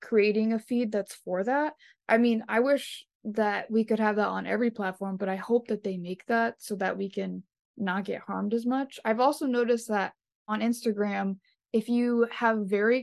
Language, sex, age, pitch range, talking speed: English, female, 20-39, 205-235 Hz, 205 wpm